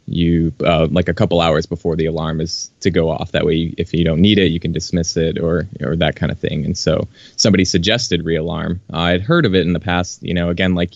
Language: English